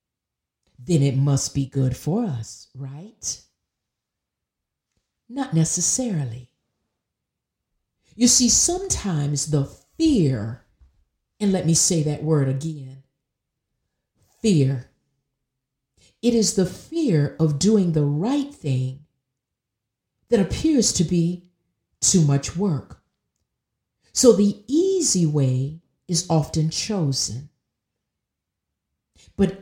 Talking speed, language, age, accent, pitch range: 95 wpm, English, 50-69, American, 130-190 Hz